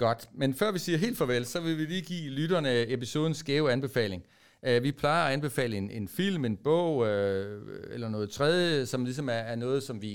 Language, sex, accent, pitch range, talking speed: Danish, male, native, 115-140 Hz, 220 wpm